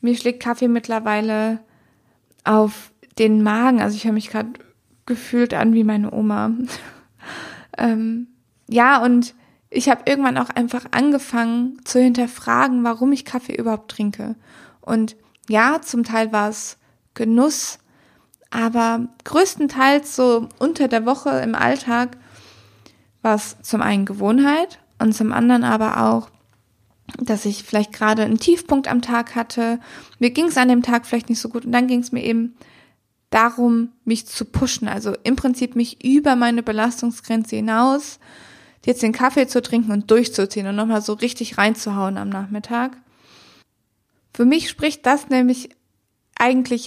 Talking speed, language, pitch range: 145 wpm, German, 220-250 Hz